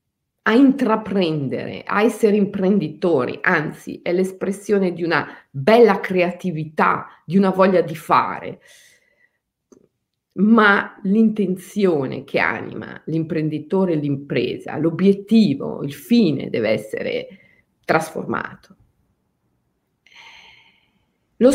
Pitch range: 155-225 Hz